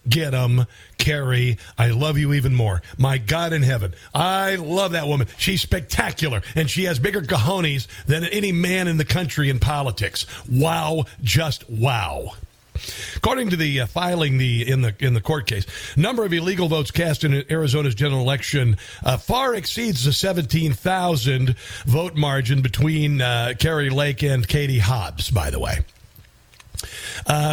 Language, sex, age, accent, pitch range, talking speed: English, male, 50-69, American, 130-165 Hz, 160 wpm